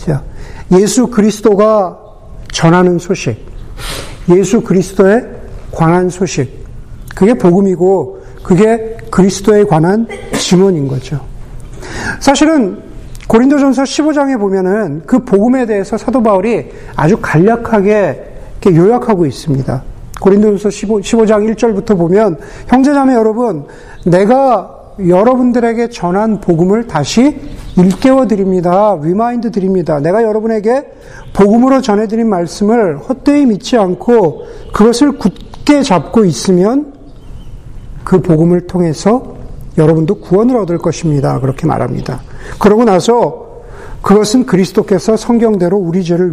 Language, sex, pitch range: Korean, male, 170-230 Hz